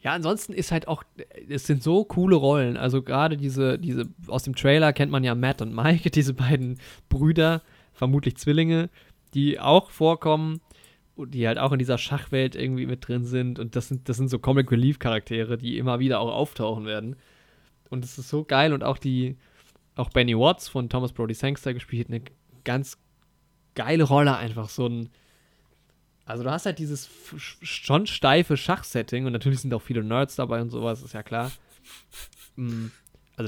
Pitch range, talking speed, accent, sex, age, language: 125-145 Hz, 180 wpm, German, male, 20-39, German